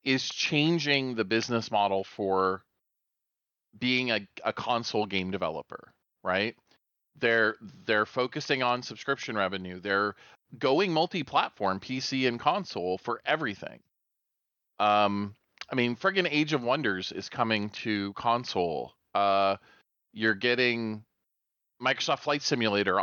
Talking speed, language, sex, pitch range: 115 wpm, English, male, 105-150 Hz